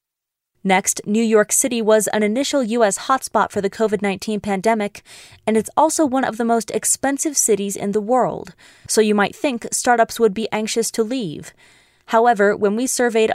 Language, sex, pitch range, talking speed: English, female, 200-235 Hz, 175 wpm